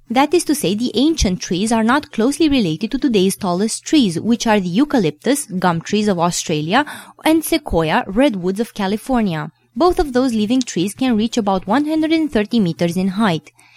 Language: English